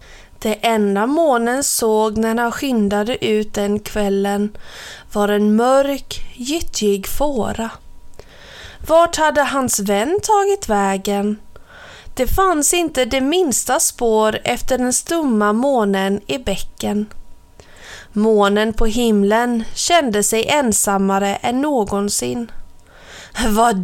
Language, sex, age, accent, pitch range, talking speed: Swedish, female, 20-39, native, 210-280 Hz, 105 wpm